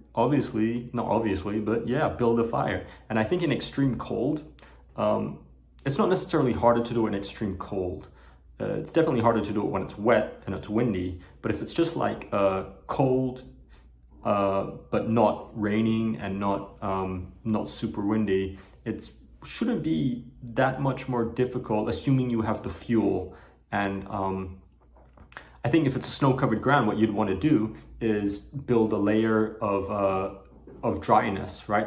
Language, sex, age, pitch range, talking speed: English, male, 30-49, 95-115 Hz, 165 wpm